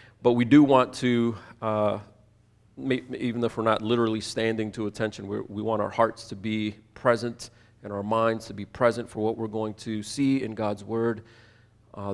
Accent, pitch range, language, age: American, 105-115 Hz, English, 40-59